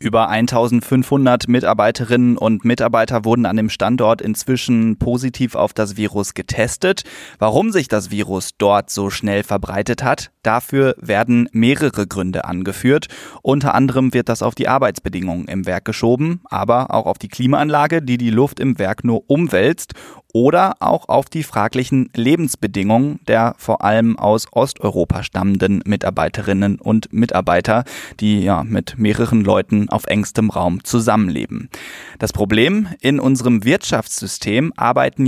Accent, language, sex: German, German, male